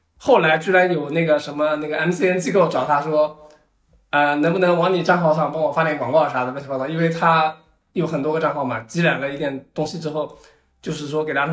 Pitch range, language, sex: 140-170 Hz, Chinese, male